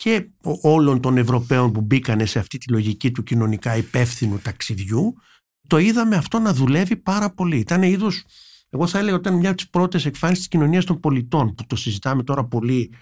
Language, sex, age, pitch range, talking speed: Greek, male, 50-69, 120-170 Hz, 190 wpm